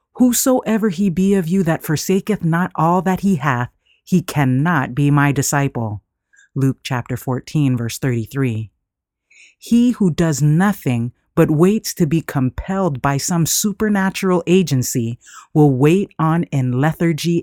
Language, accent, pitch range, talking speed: English, American, 130-180 Hz, 140 wpm